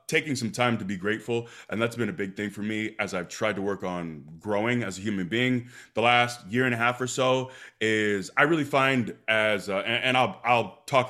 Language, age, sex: English, 20-39, male